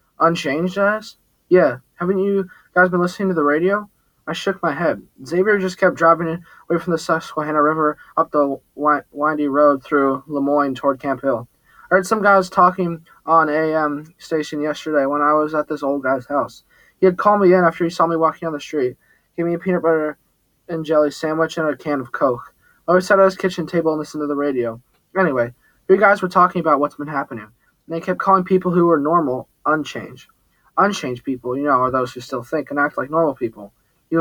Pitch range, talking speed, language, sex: 140-175 Hz, 210 wpm, English, male